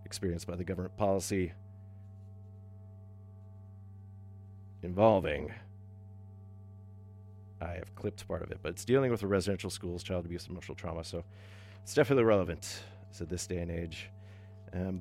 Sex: male